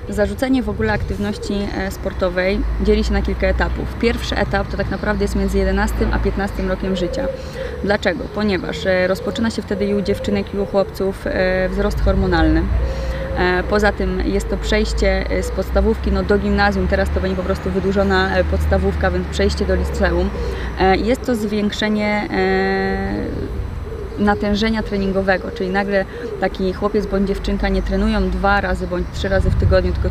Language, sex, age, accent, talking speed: Polish, female, 20-39, native, 150 wpm